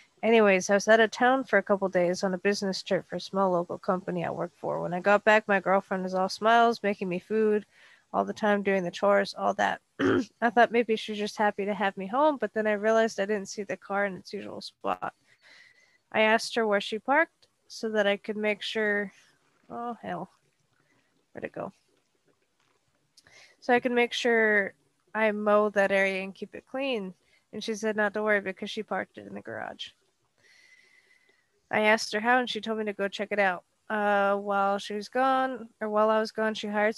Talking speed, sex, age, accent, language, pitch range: 215 wpm, female, 20-39, American, English, 200-225 Hz